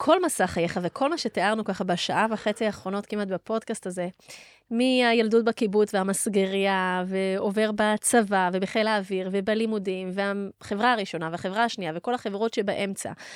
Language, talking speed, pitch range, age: Hebrew, 125 wpm, 200-235 Hz, 20-39